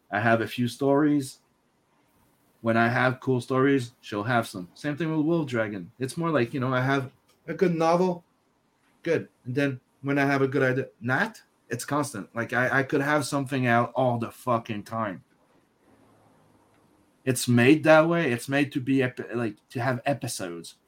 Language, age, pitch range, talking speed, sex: English, 30-49, 120-155 Hz, 180 wpm, male